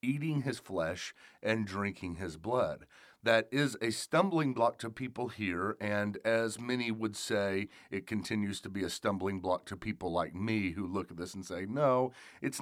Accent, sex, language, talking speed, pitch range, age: American, male, English, 185 wpm, 95-115 Hz, 40-59